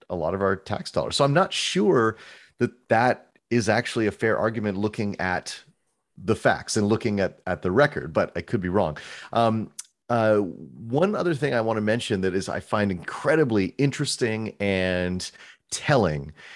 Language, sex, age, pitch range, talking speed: English, male, 30-49, 95-120 Hz, 180 wpm